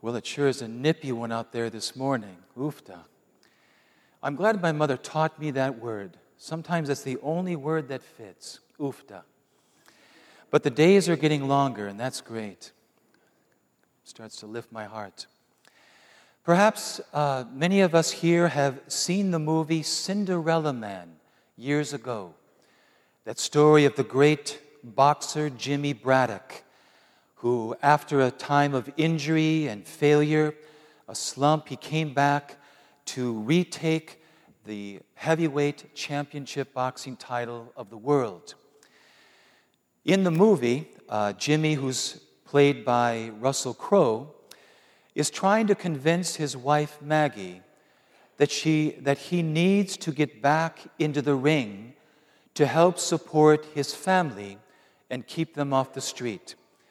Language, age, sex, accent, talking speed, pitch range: English, 50-69, male, American, 135 wpm, 125-160 Hz